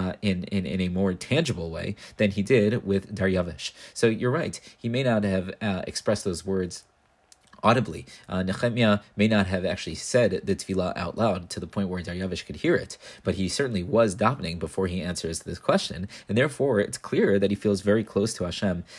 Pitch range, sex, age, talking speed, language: 95-115 Hz, male, 30-49, 205 wpm, English